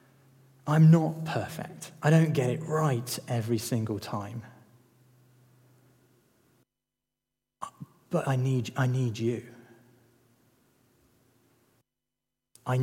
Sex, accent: male, British